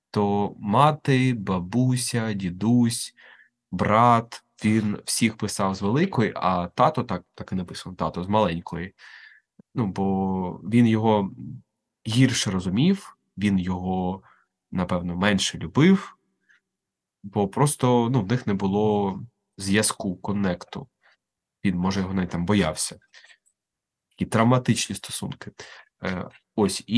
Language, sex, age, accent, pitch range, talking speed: Ukrainian, male, 20-39, native, 95-125 Hz, 110 wpm